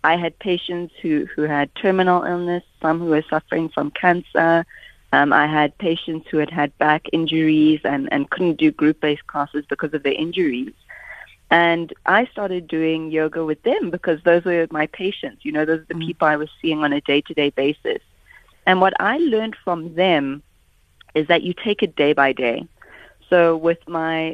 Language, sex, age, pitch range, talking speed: English, female, 30-49, 155-190 Hz, 190 wpm